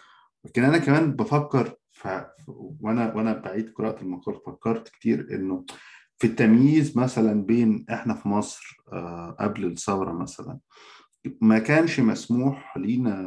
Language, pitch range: Arabic, 100-130 Hz